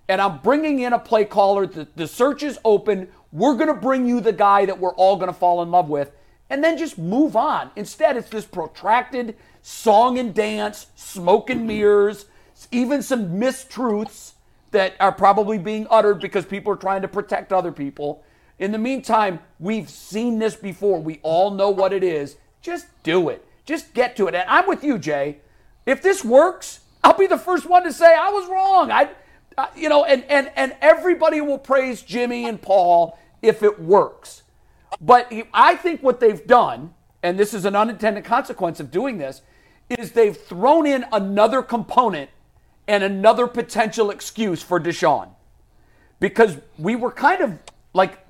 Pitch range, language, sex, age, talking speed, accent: 190-255 Hz, English, male, 50-69, 180 wpm, American